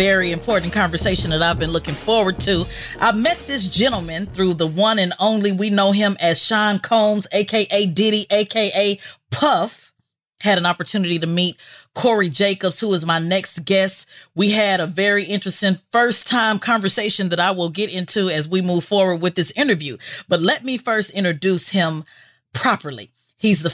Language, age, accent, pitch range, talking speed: English, 40-59, American, 170-215 Hz, 175 wpm